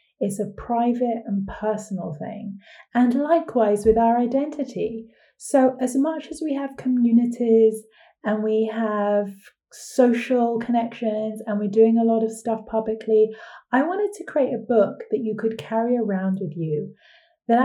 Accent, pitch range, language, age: British, 195-240 Hz, English, 30-49